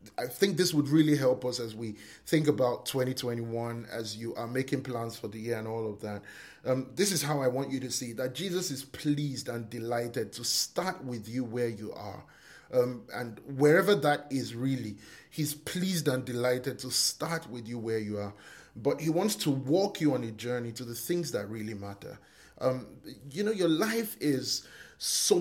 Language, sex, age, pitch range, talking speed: English, male, 30-49, 120-145 Hz, 200 wpm